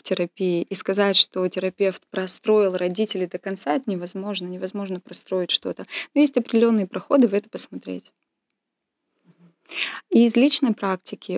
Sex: female